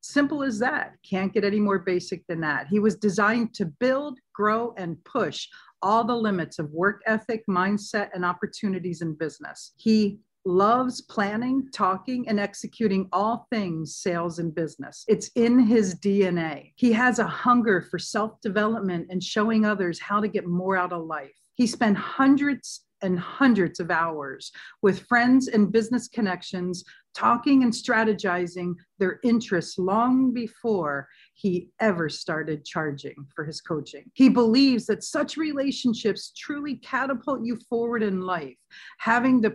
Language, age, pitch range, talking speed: English, 50-69, 180-230 Hz, 150 wpm